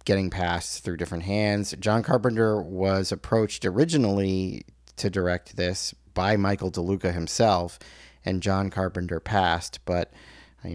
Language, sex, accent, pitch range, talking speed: English, male, American, 90-105 Hz, 130 wpm